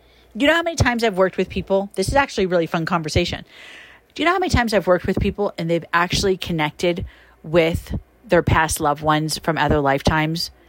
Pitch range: 150-190 Hz